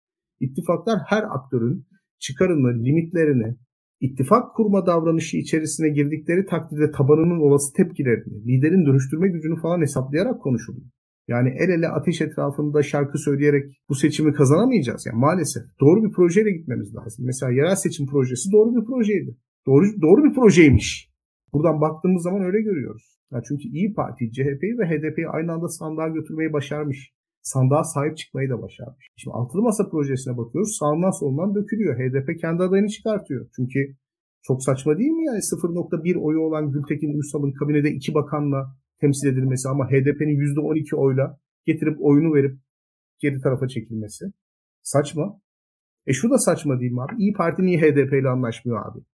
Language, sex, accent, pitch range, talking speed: Turkish, male, native, 135-170 Hz, 150 wpm